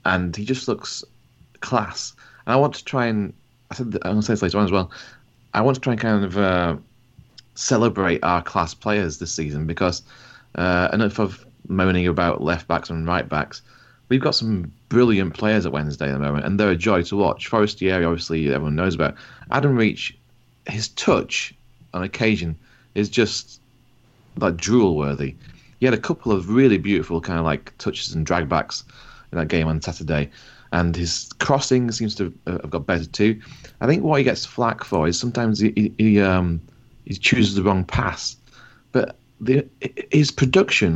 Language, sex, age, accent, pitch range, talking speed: English, male, 30-49, British, 85-120 Hz, 185 wpm